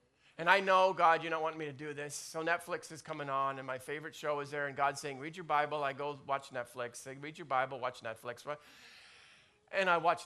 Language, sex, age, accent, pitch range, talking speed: English, male, 40-59, American, 145-215 Hz, 240 wpm